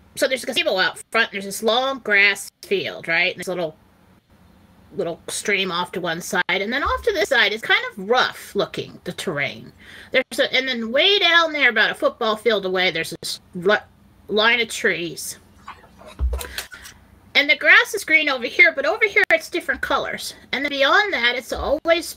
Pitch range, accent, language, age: 195-285 Hz, American, English, 30-49